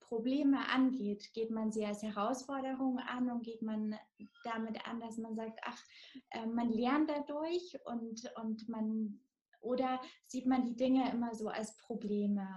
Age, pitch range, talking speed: 20-39, 205-240 Hz, 155 wpm